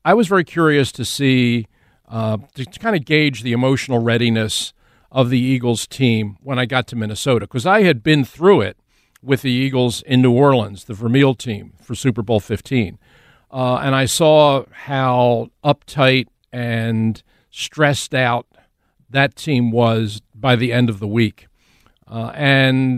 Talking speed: 165 wpm